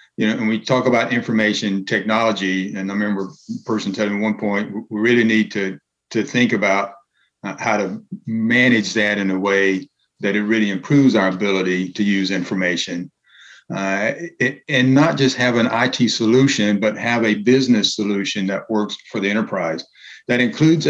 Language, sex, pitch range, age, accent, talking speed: English, male, 100-120 Hz, 50-69, American, 180 wpm